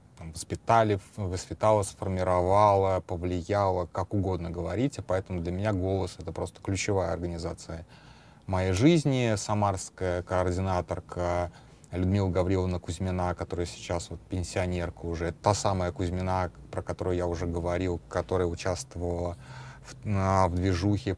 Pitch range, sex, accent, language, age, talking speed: 90-105 Hz, male, native, Russian, 30-49, 110 wpm